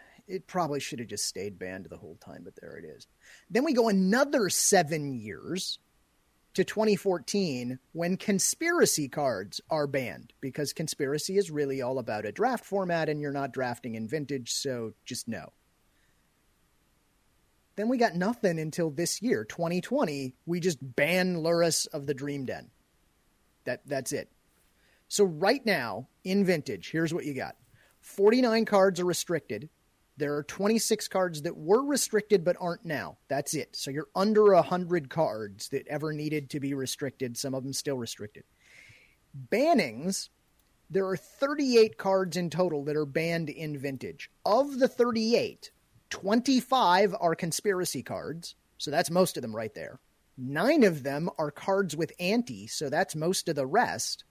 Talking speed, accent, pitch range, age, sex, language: 160 wpm, American, 145-200 Hz, 30-49, male, English